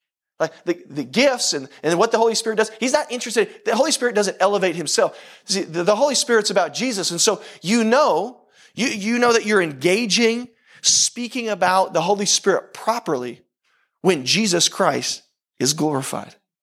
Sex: male